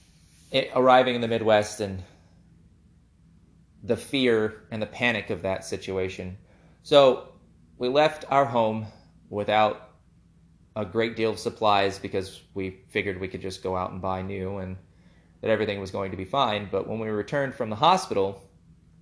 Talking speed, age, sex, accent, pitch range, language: 160 wpm, 20-39, male, American, 95-110 Hz, English